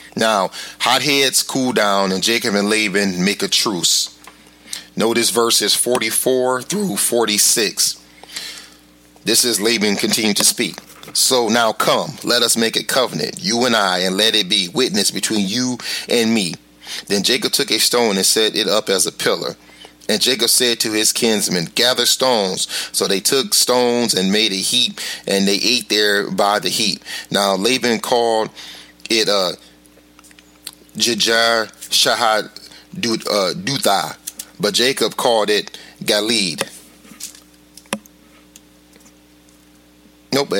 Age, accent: 30-49, American